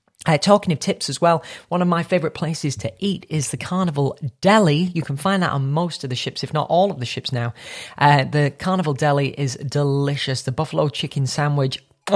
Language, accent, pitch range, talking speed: English, British, 145-210 Hz, 210 wpm